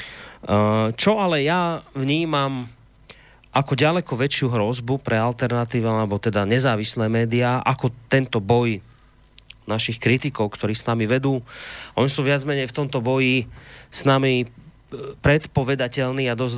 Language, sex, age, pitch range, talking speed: Slovak, male, 30-49, 110-135 Hz, 130 wpm